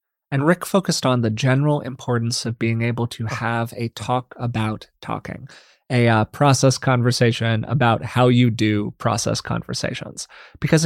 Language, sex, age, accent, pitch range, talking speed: English, male, 30-49, American, 115-135 Hz, 150 wpm